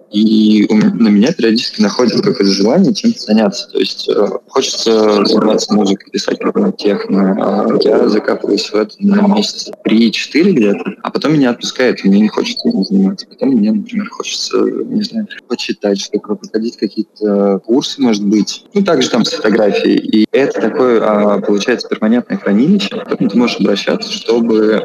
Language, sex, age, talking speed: Russian, male, 20-39, 155 wpm